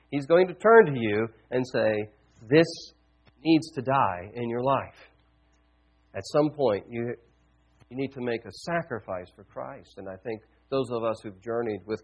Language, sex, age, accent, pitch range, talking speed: English, male, 40-59, American, 90-135 Hz, 180 wpm